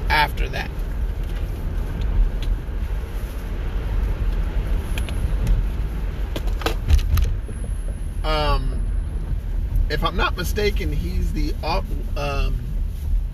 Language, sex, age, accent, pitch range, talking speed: English, male, 30-49, American, 75-95 Hz, 45 wpm